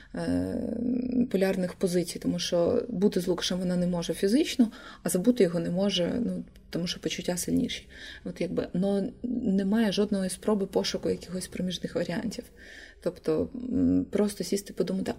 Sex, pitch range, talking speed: female, 180-230 Hz, 130 wpm